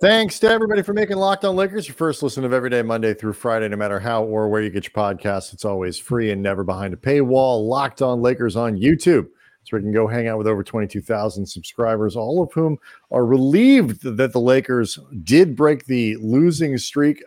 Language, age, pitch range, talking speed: English, 40-59, 105-150 Hz, 220 wpm